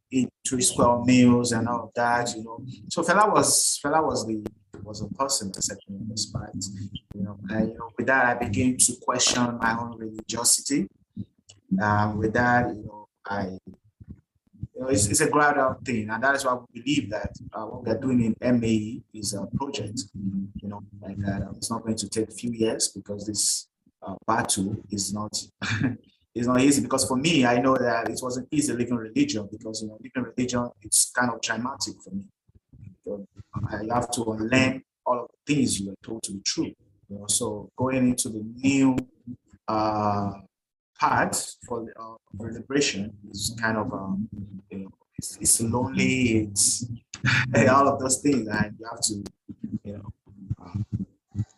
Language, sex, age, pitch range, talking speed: English, male, 20-39, 100-125 Hz, 185 wpm